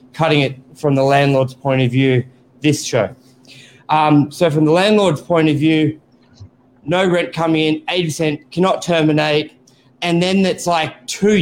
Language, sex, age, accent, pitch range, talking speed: English, male, 20-39, Australian, 135-175 Hz, 160 wpm